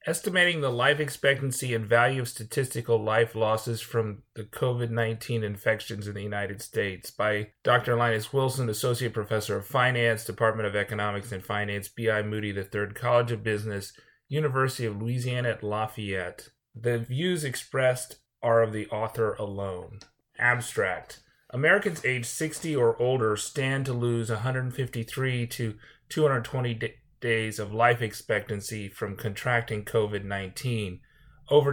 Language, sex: English, male